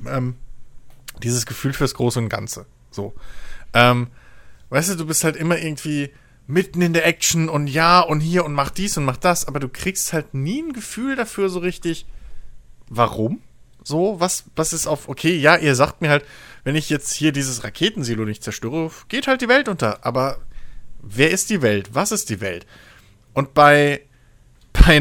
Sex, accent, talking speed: male, German, 185 wpm